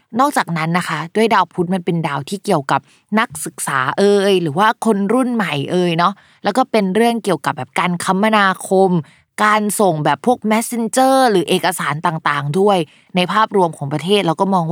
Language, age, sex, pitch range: Thai, 20-39, female, 165-215 Hz